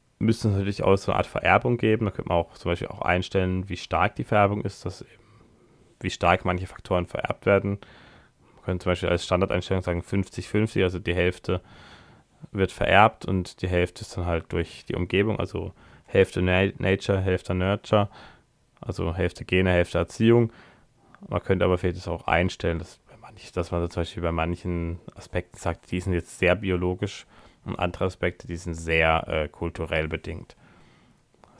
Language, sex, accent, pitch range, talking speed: German, male, German, 85-100 Hz, 170 wpm